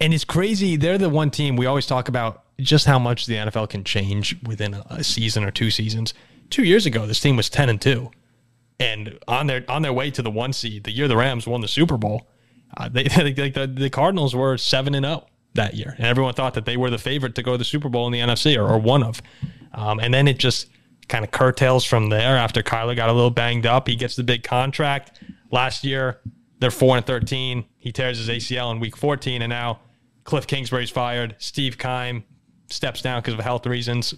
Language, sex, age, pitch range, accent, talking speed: English, male, 30-49, 115-140 Hz, American, 230 wpm